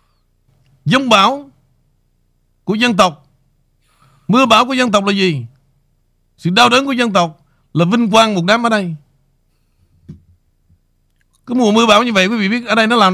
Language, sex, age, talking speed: Vietnamese, male, 60-79, 175 wpm